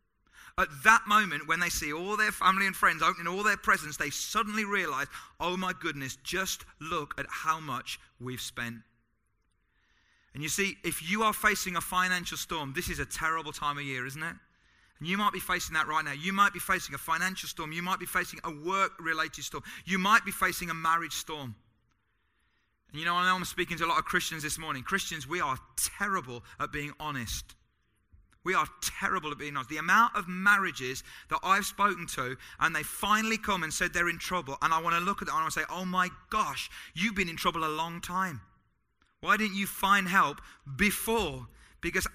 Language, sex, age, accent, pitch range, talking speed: English, male, 30-49, British, 150-195 Hz, 210 wpm